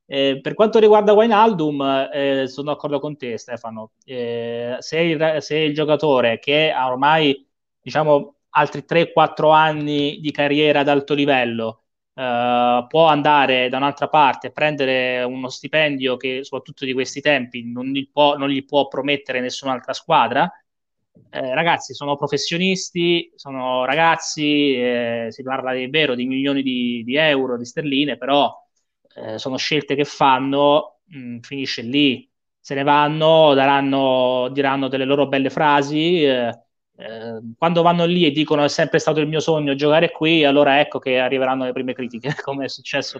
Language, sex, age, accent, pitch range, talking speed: Italian, male, 20-39, native, 130-155 Hz, 155 wpm